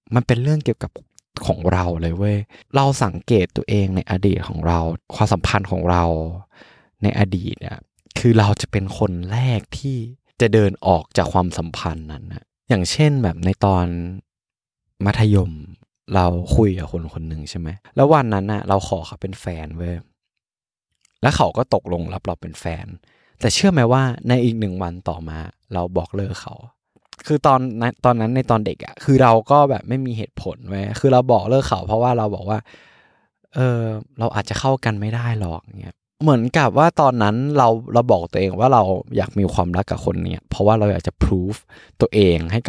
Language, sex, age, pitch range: Thai, male, 20-39, 90-125 Hz